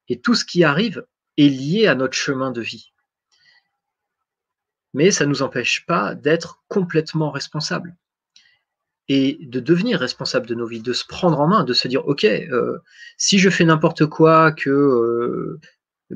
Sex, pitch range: male, 125-165 Hz